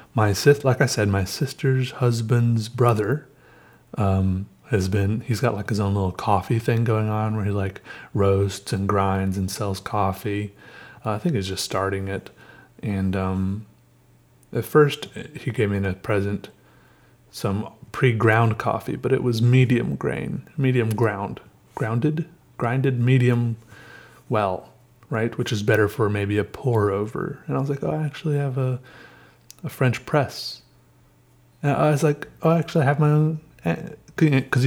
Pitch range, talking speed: 105-135 Hz, 160 wpm